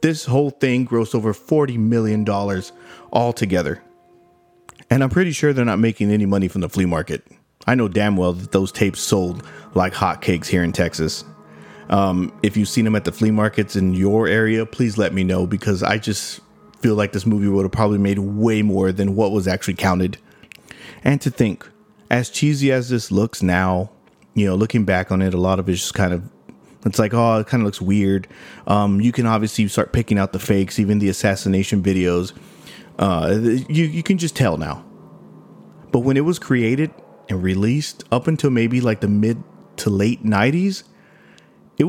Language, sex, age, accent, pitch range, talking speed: English, male, 30-49, American, 95-130 Hz, 195 wpm